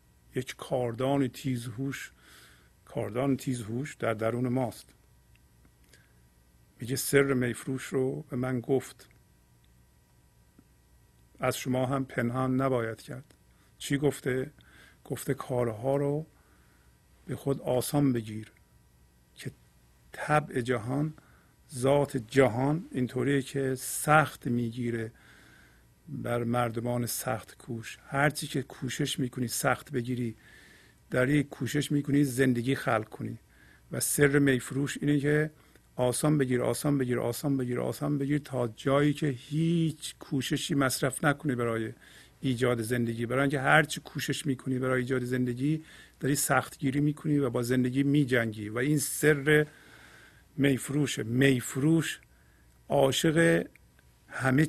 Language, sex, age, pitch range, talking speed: Persian, male, 50-69, 115-140 Hz, 110 wpm